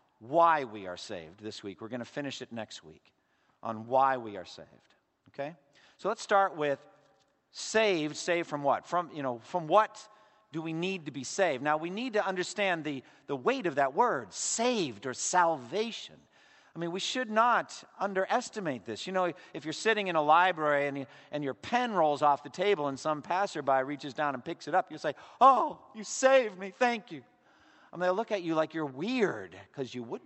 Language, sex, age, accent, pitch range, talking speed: English, male, 50-69, American, 130-195 Hz, 205 wpm